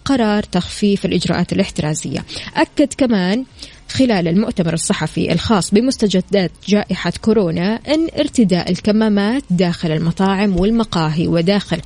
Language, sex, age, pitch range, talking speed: Arabic, female, 20-39, 185-225 Hz, 100 wpm